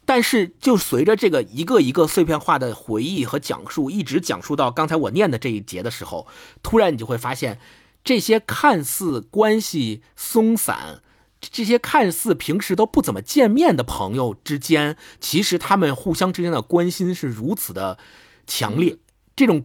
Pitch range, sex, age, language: 150-225 Hz, male, 50-69, Chinese